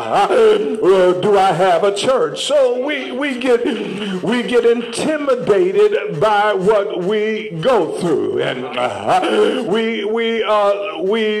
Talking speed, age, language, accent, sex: 115 wpm, 50-69, English, American, male